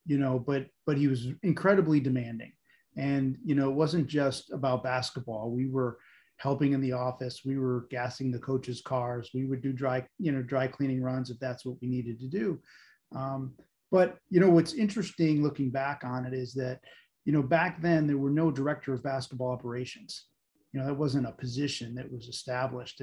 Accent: American